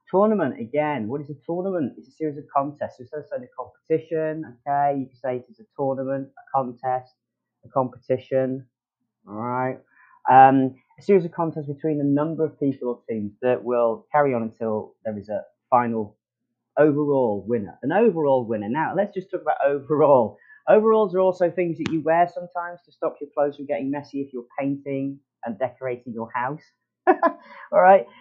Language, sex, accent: English, male, British